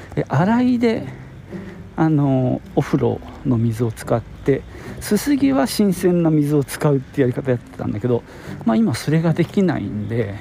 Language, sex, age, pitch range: Japanese, male, 50-69, 110-155 Hz